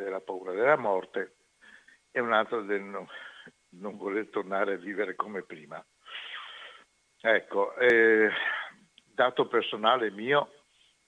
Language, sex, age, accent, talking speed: Italian, male, 60-79, native, 115 wpm